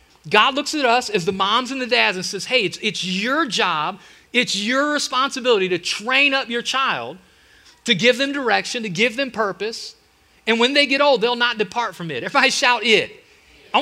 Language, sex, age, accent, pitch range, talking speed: English, male, 30-49, American, 195-255 Hz, 205 wpm